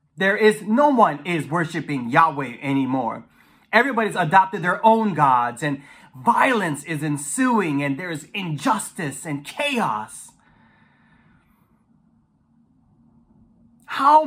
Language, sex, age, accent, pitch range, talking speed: English, male, 30-49, American, 160-255 Hz, 95 wpm